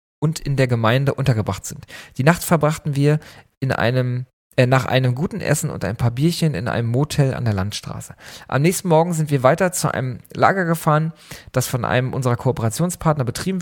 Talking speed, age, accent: 190 wpm, 40-59, German